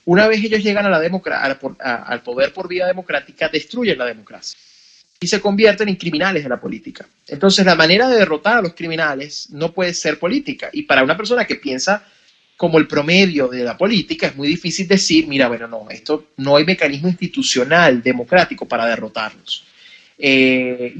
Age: 30-49